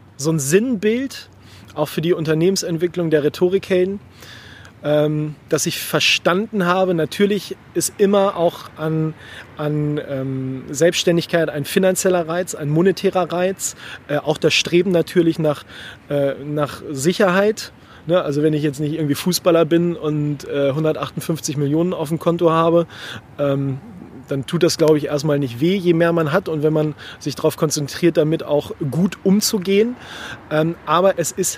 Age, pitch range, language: 30-49, 150-180 Hz, German